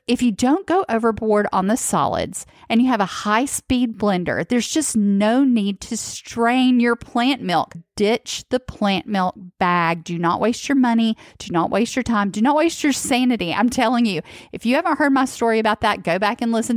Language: English